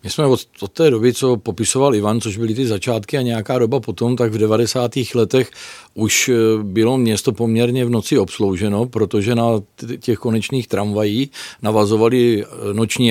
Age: 50-69